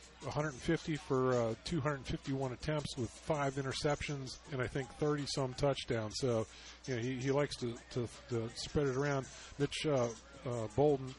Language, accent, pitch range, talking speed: English, American, 125-145 Hz, 150 wpm